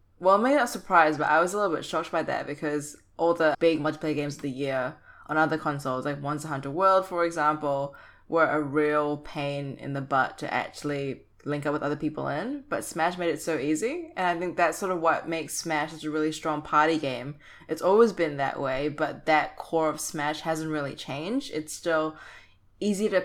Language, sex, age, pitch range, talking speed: English, female, 20-39, 145-170 Hz, 220 wpm